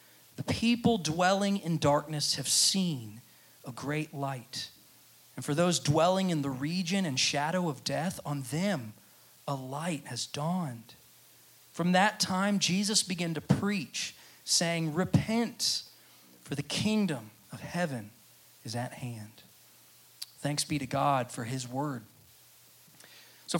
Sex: male